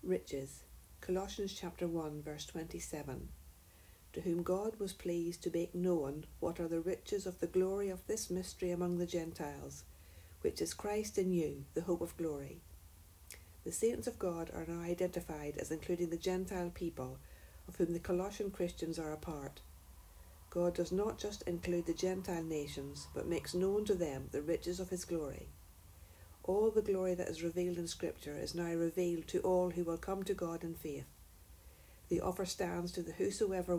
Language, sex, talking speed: English, female, 180 wpm